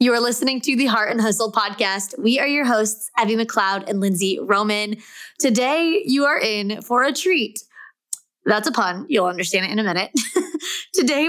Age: 20-39